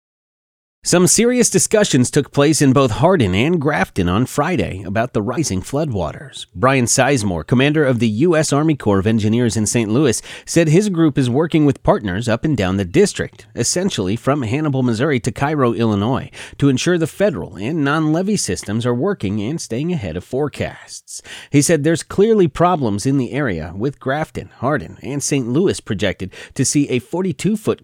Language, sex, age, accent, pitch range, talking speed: English, male, 30-49, American, 105-150 Hz, 175 wpm